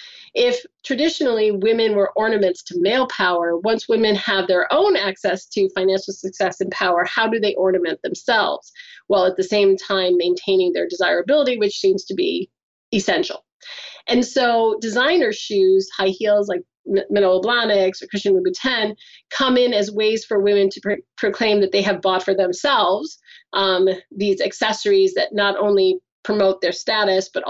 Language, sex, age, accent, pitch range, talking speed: English, female, 30-49, American, 195-270 Hz, 160 wpm